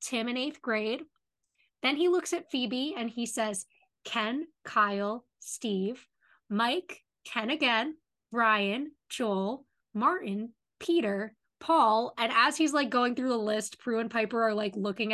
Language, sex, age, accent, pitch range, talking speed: English, female, 10-29, American, 220-270 Hz, 145 wpm